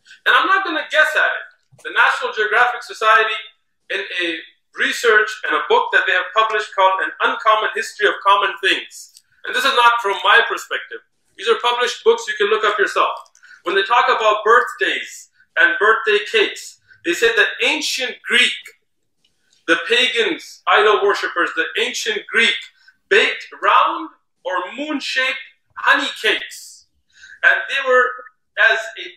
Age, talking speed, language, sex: 40-59, 155 wpm, English, male